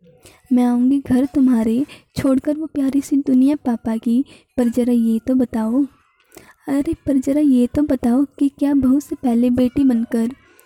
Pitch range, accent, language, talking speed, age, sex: 250-295 Hz, native, Hindi, 165 wpm, 20-39, female